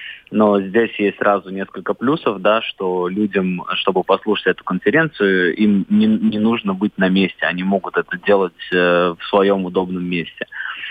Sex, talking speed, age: male, 160 wpm, 20-39